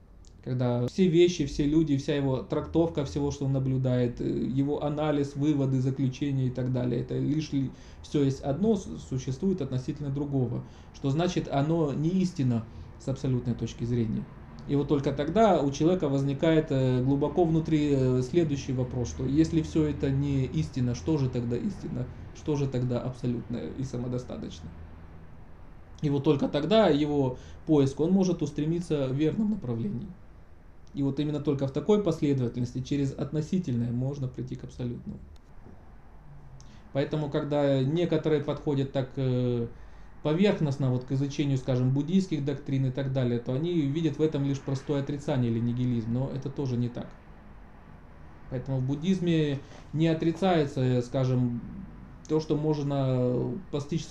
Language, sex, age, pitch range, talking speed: Russian, male, 20-39, 125-150 Hz, 140 wpm